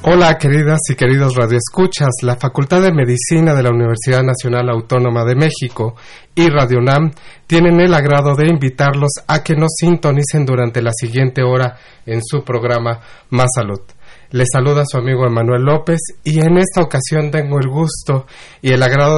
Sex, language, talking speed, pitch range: male, Spanish, 165 wpm, 120-145 Hz